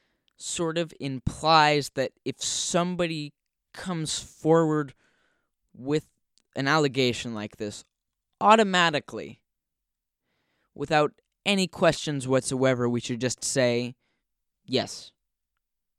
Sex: male